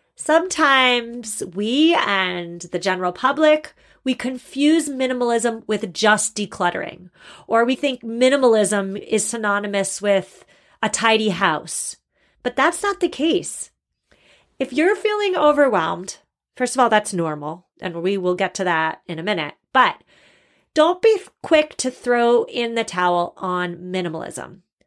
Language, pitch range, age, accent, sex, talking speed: English, 195-260 Hz, 30-49, American, female, 135 wpm